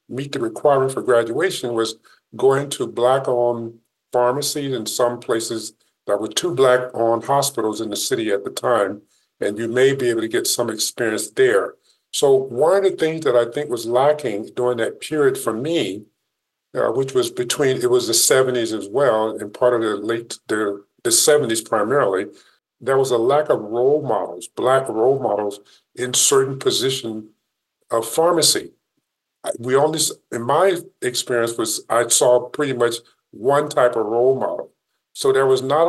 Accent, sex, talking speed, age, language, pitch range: American, male, 170 wpm, 50-69, English, 115-150 Hz